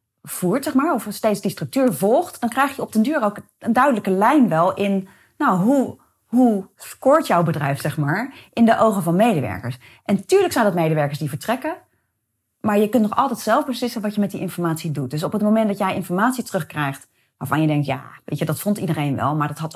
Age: 30-49